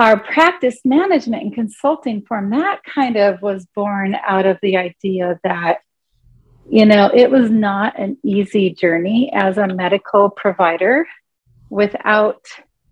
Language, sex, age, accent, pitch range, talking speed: English, female, 40-59, American, 175-220 Hz, 135 wpm